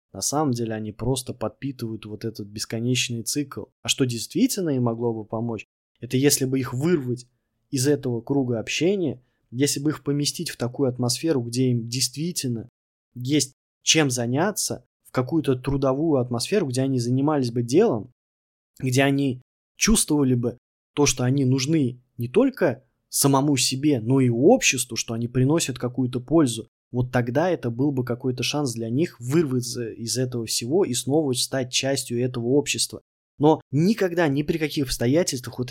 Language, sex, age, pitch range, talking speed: Russian, male, 20-39, 115-140 Hz, 160 wpm